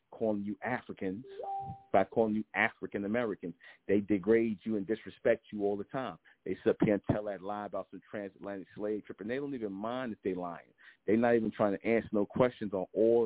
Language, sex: English, male